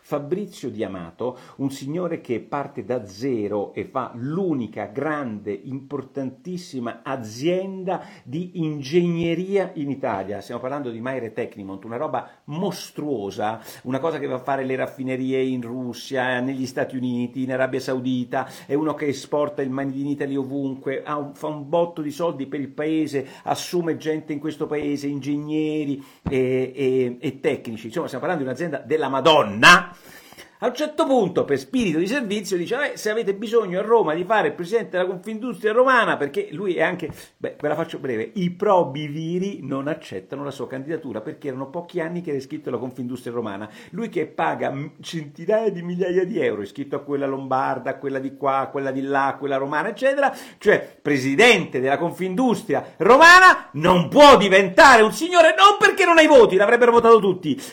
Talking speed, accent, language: 170 wpm, native, Italian